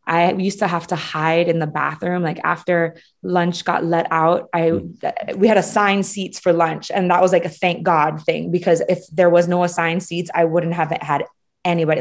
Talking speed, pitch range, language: 210 wpm, 160-180 Hz, English